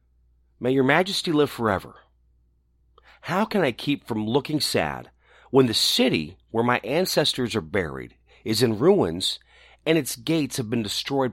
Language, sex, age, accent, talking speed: English, male, 40-59, American, 155 wpm